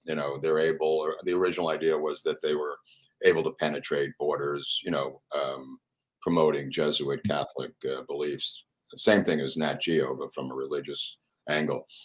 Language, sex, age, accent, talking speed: English, male, 60-79, American, 165 wpm